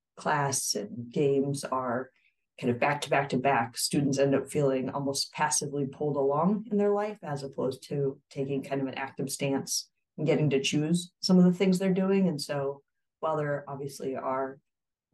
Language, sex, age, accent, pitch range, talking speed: English, female, 30-49, American, 135-165 Hz, 190 wpm